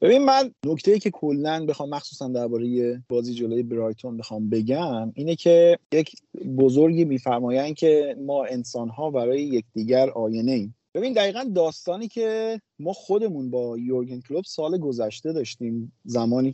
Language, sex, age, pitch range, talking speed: Persian, male, 30-49, 130-170 Hz, 140 wpm